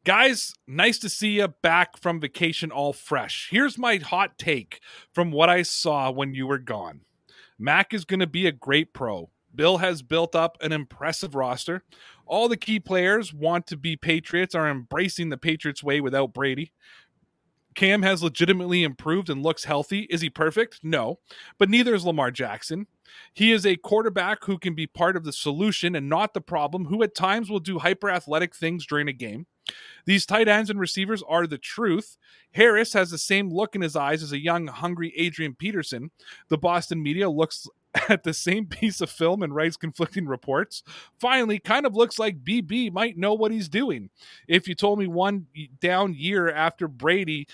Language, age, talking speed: English, 30-49, 190 wpm